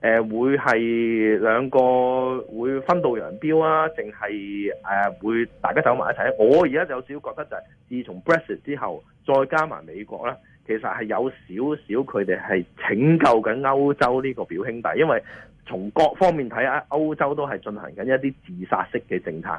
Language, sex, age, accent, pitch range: Chinese, male, 30-49, native, 110-145 Hz